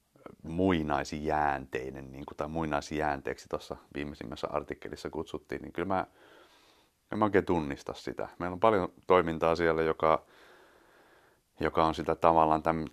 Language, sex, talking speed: Finnish, male, 120 wpm